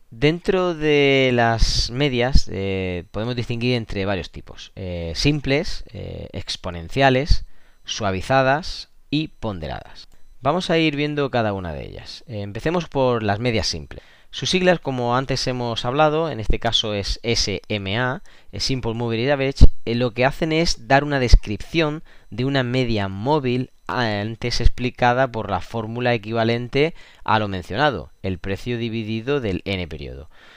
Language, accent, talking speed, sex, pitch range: Spanish, Spanish, 140 wpm, male, 105-140 Hz